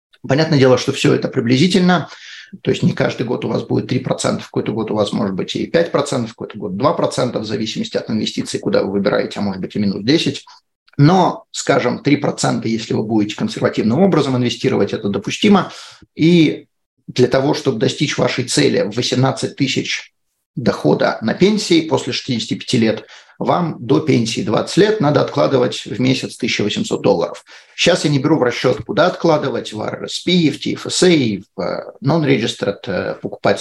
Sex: male